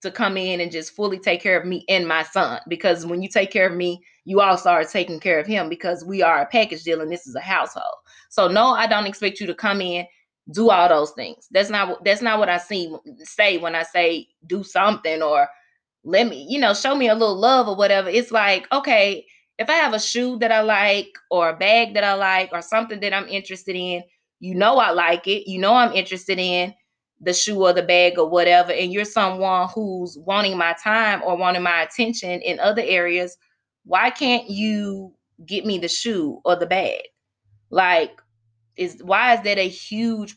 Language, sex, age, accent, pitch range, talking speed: English, female, 20-39, American, 180-235 Hz, 215 wpm